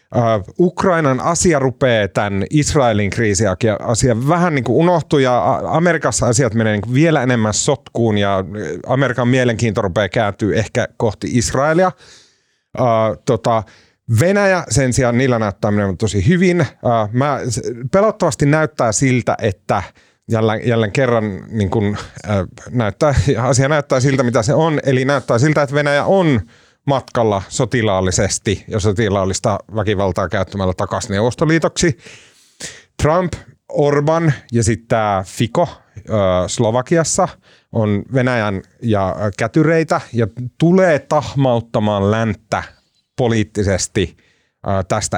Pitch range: 105-145 Hz